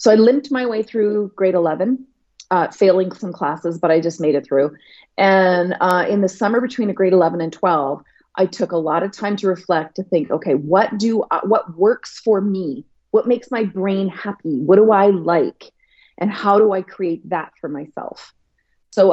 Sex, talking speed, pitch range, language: female, 195 wpm, 175-210 Hz, English